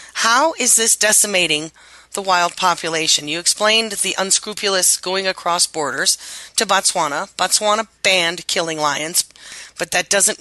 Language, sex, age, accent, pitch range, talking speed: English, female, 30-49, American, 170-210 Hz, 135 wpm